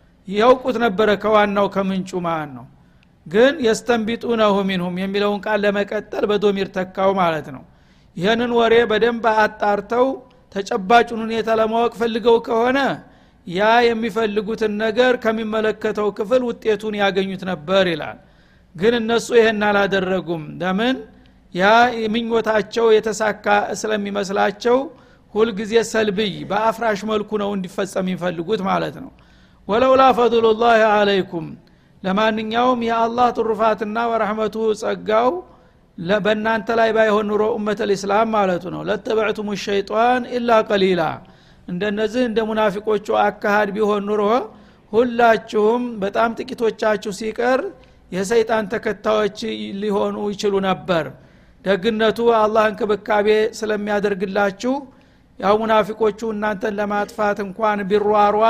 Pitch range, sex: 205-230 Hz, male